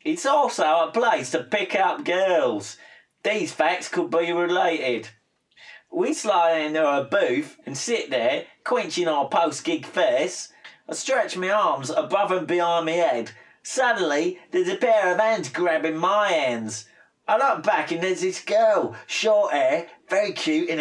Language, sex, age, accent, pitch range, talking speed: English, male, 30-49, British, 165-265 Hz, 160 wpm